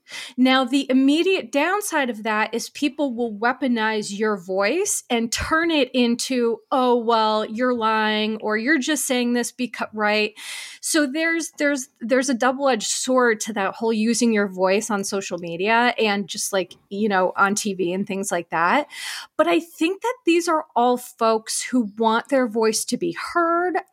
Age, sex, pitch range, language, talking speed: 30-49, female, 220-285 Hz, English, 175 wpm